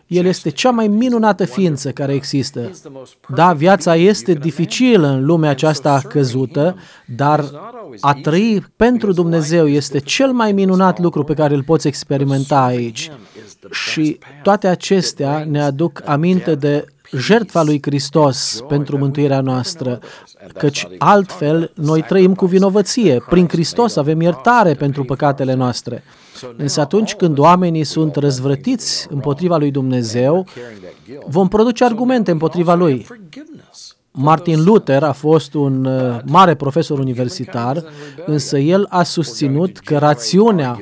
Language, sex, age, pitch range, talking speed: Romanian, male, 30-49, 140-185 Hz, 125 wpm